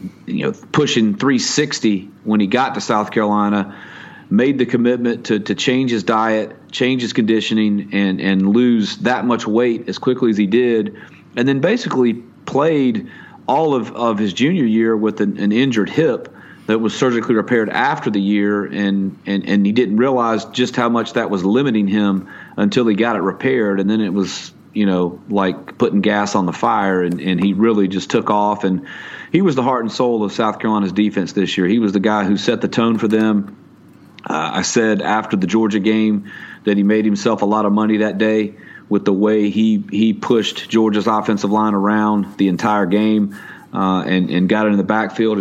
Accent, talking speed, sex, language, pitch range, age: American, 200 wpm, male, English, 100-115 Hz, 40-59